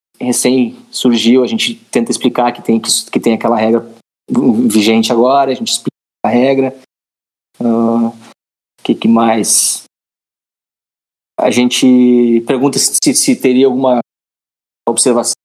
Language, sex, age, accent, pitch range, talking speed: Portuguese, male, 20-39, Brazilian, 115-145 Hz, 130 wpm